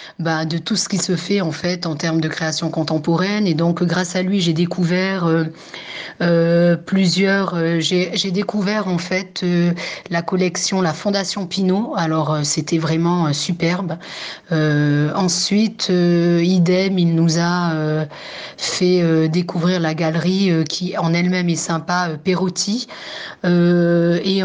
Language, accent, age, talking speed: French, French, 30-49, 160 wpm